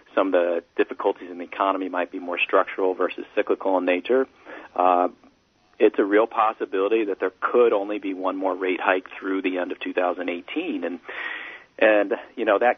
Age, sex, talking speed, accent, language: 40-59, male, 185 wpm, American, English